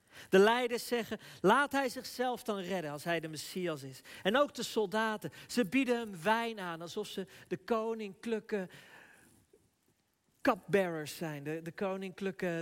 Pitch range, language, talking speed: 150-200 Hz, Dutch, 145 wpm